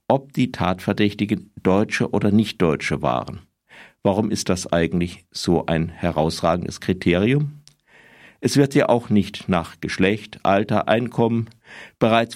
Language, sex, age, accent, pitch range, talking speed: German, male, 50-69, German, 95-120 Hz, 120 wpm